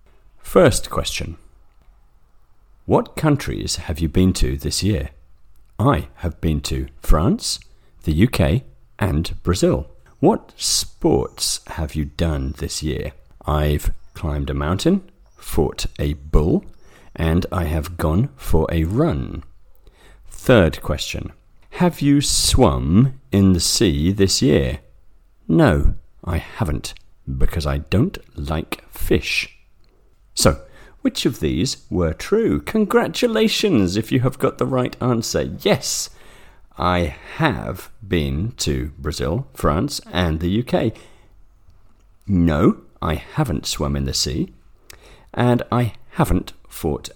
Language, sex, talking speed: English, male, 120 wpm